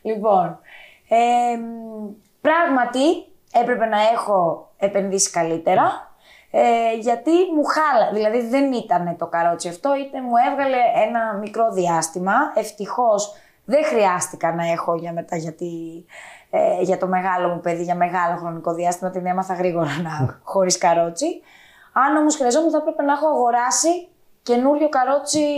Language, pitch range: Greek, 180-270 Hz